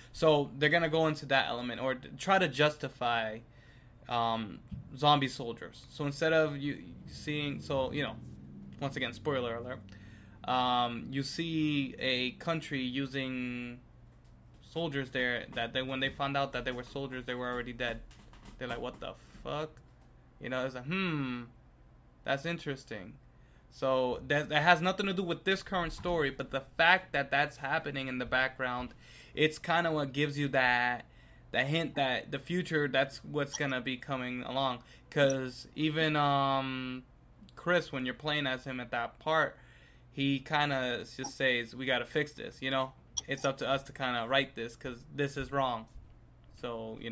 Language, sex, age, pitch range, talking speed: English, male, 20-39, 125-150 Hz, 175 wpm